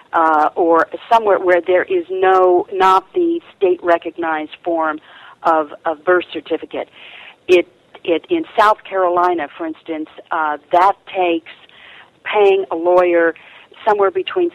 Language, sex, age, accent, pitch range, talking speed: English, female, 50-69, American, 165-260 Hz, 130 wpm